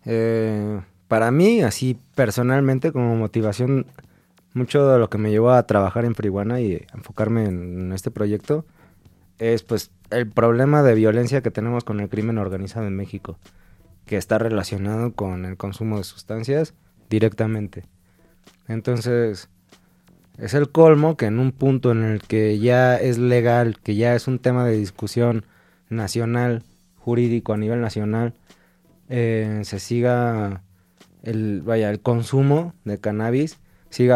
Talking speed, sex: 140 wpm, male